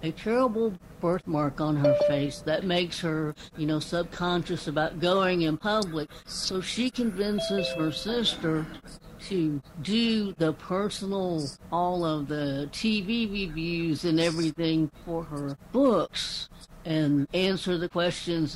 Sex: female